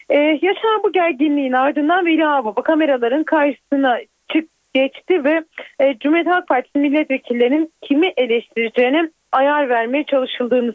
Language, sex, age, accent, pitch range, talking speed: Turkish, female, 40-59, native, 255-335 Hz, 110 wpm